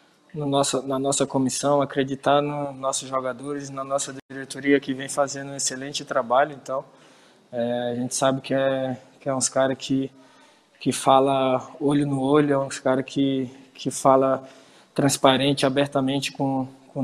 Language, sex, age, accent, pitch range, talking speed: Portuguese, male, 20-39, Brazilian, 130-140 Hz, 160 wpm